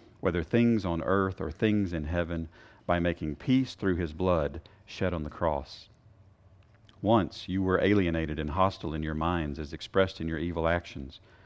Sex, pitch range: male, 85-105 Hz